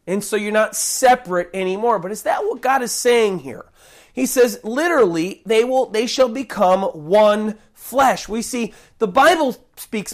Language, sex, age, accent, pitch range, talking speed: English, male, 30-49, American, 215-275 Hz, 165 wpm